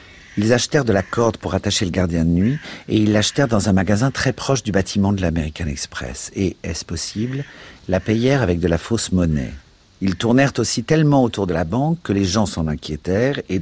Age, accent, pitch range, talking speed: 50-69, French, 85-105 Hz, 210 wpm